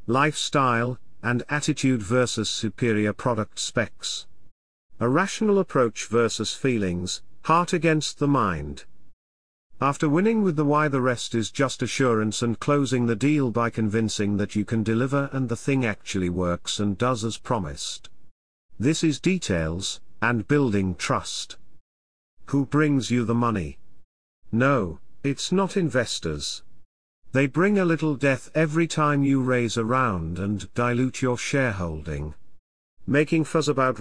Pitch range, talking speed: 100-145 Hz, 140 wpm